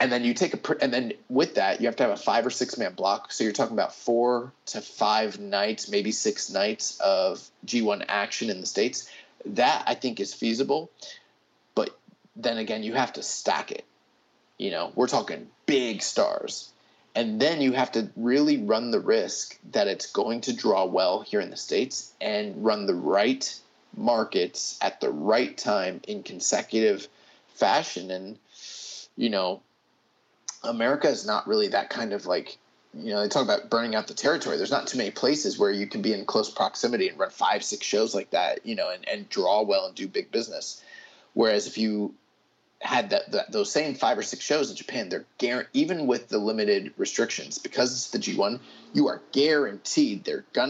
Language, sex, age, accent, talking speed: English, male, 30-49, American, 195 wpm